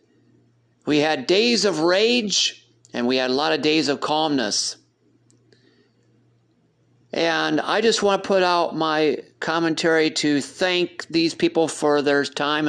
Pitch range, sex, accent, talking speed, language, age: 145-175 Hz, male, American, 140 wpm, English, 50-69